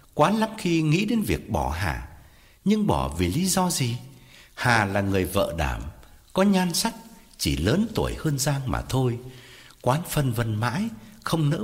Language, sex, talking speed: Vietnamese, male, 180 wpm